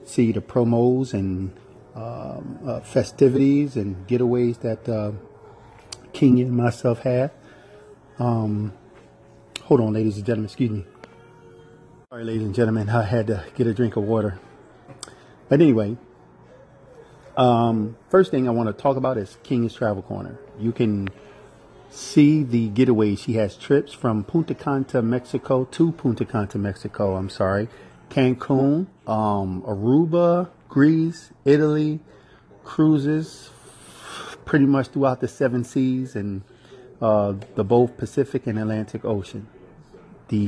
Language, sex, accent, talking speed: English, male, American, 130 wpm